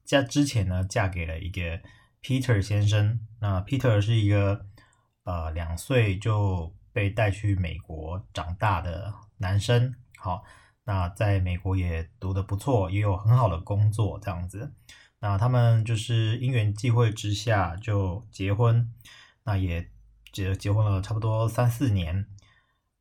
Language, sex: Chinese, male